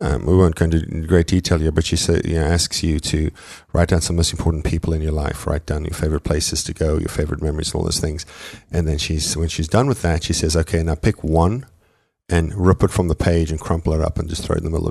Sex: male